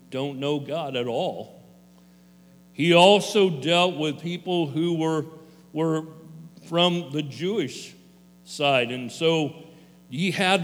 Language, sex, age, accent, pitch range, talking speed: English, male, 50-69, American, 135-180 Hz, 120 wpm